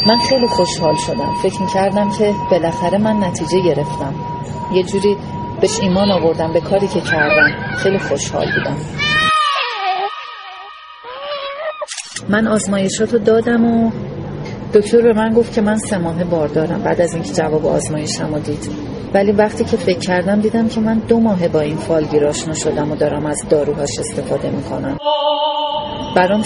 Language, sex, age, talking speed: Persian, female, 40-59, 150 wpm